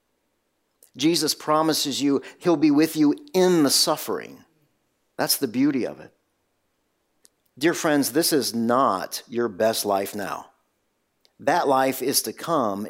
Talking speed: 135 wpm